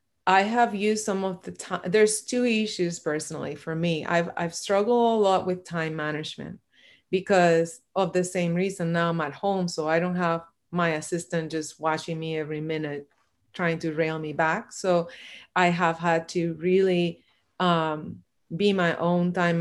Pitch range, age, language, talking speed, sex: 165-190 Hz, 30-49, English, 175 wpm, female